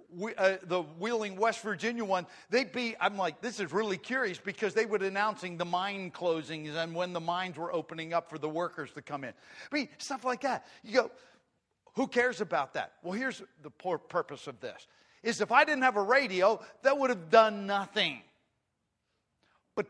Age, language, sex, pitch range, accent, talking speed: 50-69, English, male, 170-225 Hz, American, 195 wpm